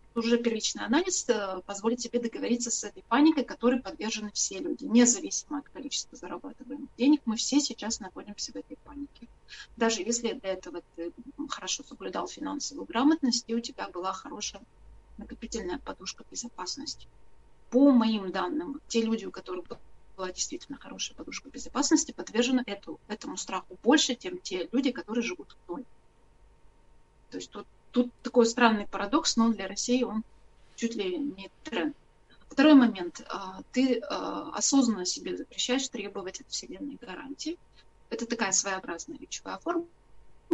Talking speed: 140 wpm